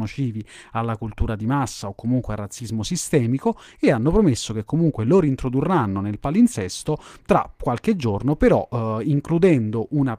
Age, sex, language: 30-49, male, Italian